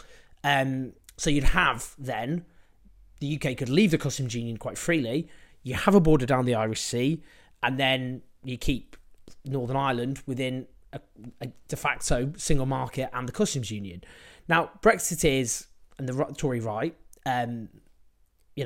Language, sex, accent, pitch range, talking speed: English, male, British, 125-155 Hz, 155 wpm